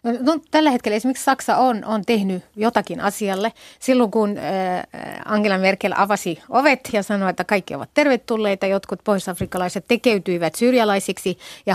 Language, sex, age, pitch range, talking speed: Finnish, female, 30-49, 195-250 Hz, 135 wpm